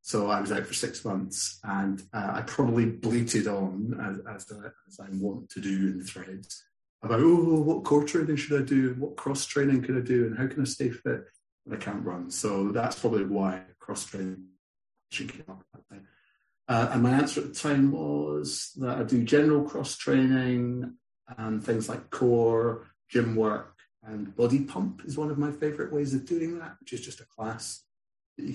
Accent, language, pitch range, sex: British, English, 100-130 Hz, male